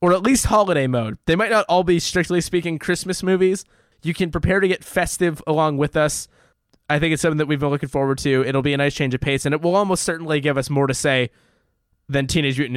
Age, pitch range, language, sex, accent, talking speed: 20-39, 140-175 Hz, English, male, American, 250 wpm